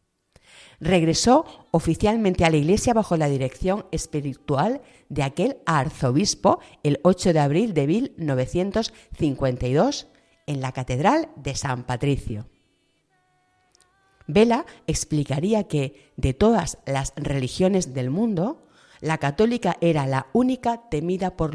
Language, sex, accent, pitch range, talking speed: Spanish, female, Spanish, 135-190 Hz, 110 wpm